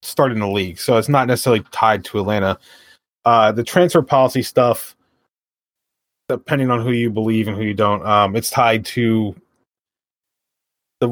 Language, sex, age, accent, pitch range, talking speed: English, male, 20-39, American, 105-125 Hz, 160 wpm